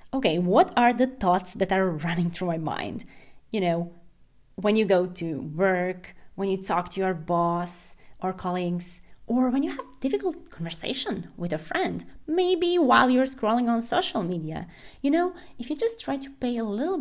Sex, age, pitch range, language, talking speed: female, 20-39, 190-280 Hz, English, 185 wpm